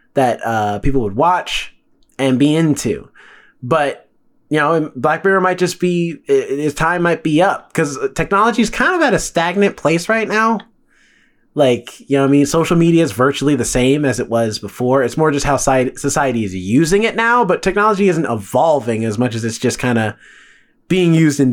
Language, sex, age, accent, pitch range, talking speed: English, male, 20-39, American, 125-175 Hz, 205 wpm